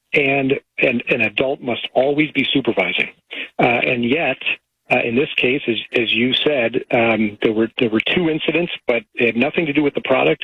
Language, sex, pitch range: English, male, 115-130 Hz